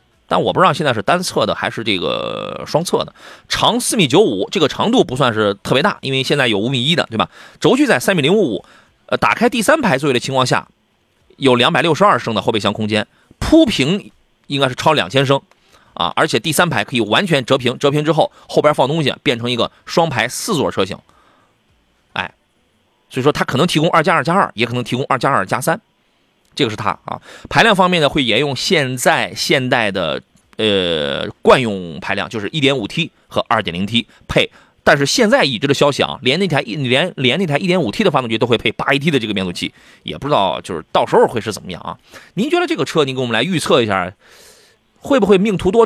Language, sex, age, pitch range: Chinese, male, 30-49, 120-175 Hz